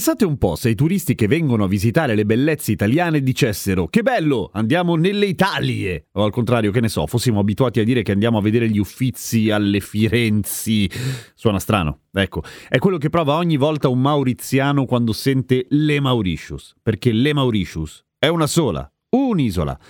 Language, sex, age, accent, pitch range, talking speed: Italian, male, 40-59, native, 105-155 Hz, 180 wpm